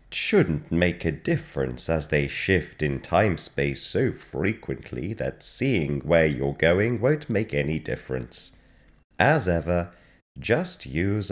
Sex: male